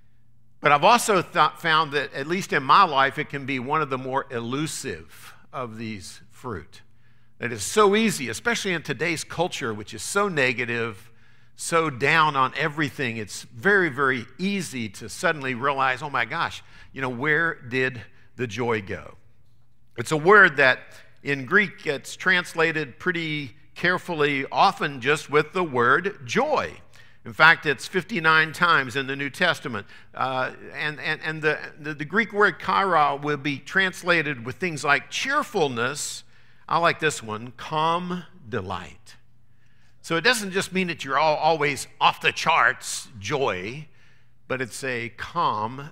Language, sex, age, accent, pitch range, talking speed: English, male, 50-69, American, 120-160 Hz, 155 wpm